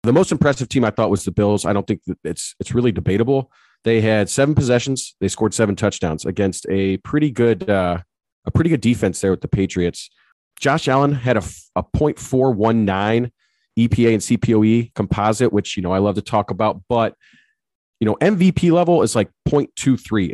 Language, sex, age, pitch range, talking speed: English, male, 30-49, 100-125 Hz, 190 wpm